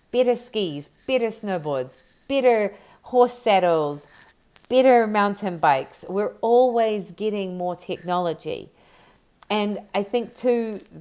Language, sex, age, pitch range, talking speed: English, female, 40-59, 175-225 Hz, 105 wpm